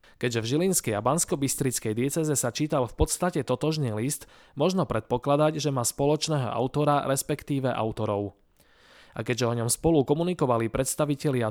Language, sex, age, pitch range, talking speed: Slovak, male, 20-39, 115-155 Hz, 145 wpm